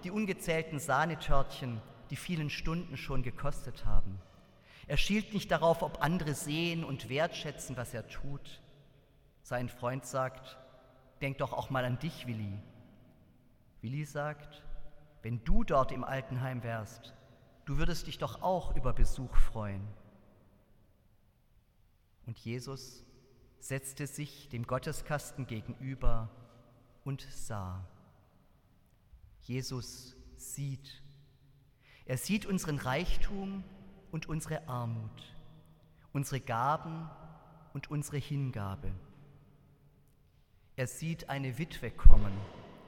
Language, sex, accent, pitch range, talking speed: German, male, German, 115-150 Hz, 105 wpm